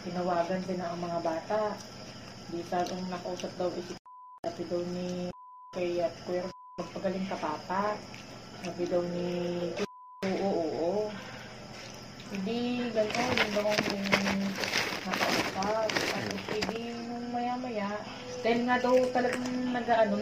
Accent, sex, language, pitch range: native, female, Filipino, 180-230 Hz